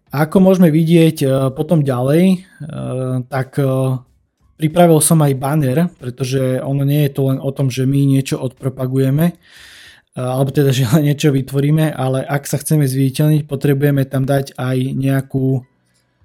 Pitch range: 130-145 Hz